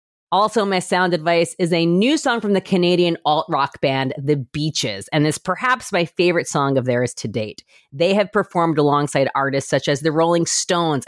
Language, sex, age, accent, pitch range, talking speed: English, female, 30-49, American, 135-175 Hz, 190 wpm